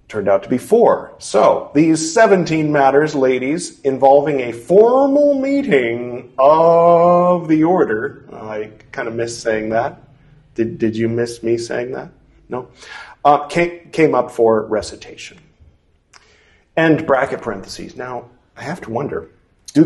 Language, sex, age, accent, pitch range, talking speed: English, male, 50-69, American, 110-155 Hz, 140 wpm